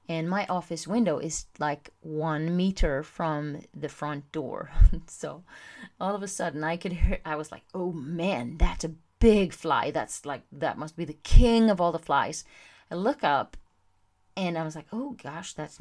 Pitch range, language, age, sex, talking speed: 150-185 Hz, English, 30-49, female, 190 wpm